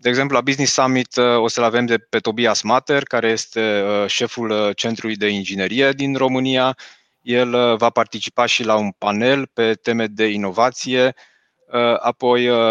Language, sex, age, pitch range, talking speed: Romanian, male, 20-39, 105-120 Hz, 145 wpm